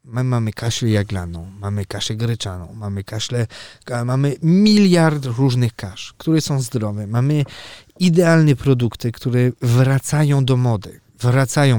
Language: Polish